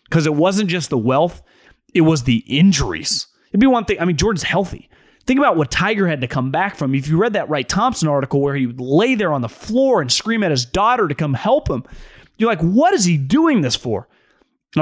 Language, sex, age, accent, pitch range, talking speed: English, male, 30-49, American, 140-190 Hz, 245 wpm